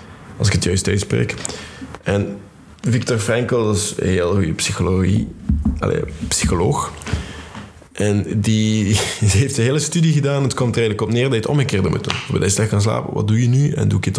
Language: Dutch